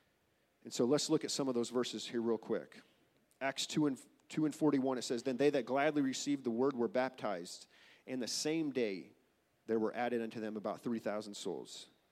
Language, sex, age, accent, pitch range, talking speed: English, male, 40-59, American, 120-145 Hz, 205 wpm